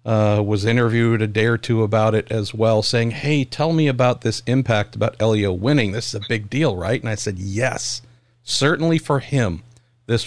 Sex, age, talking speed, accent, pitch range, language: male, 50-69, 205 wpm, American, 115-130 Hz, English